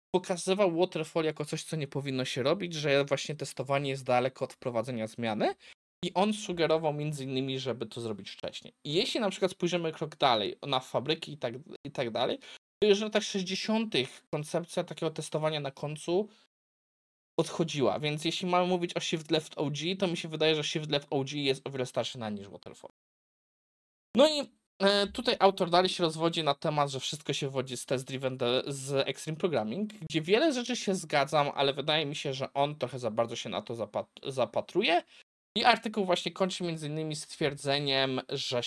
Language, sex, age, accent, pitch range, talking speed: Polish, male, 20-39, native, 135-185 Hz, 185 wpm